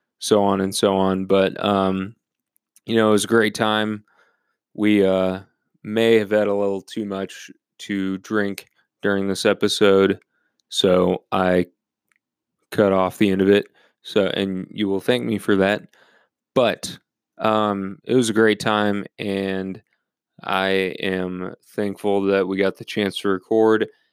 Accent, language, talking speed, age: American, English, 155 wpm, 20-39